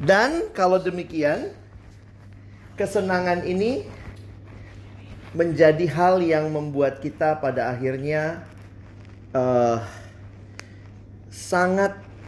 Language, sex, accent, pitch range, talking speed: Indonesian, male, native, 100-165 Hz, 70 wpm